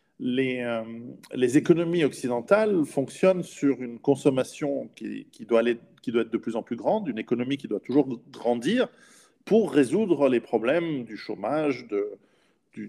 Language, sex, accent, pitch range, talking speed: French, male, French, 120-165 Hz, 165 wpm